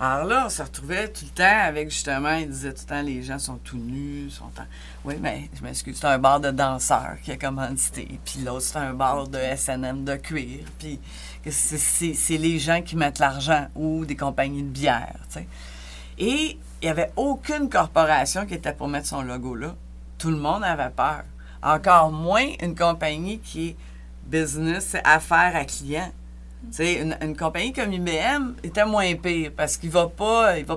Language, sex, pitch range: French, female, 135-175 Hz